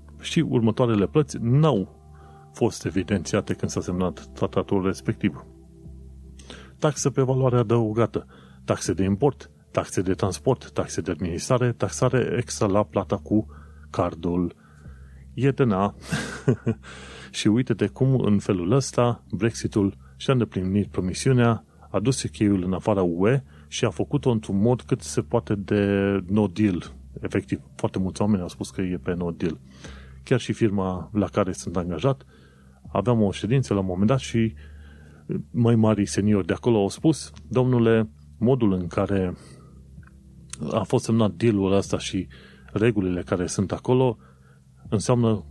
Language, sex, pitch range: Romanian, male, 90-115 Hz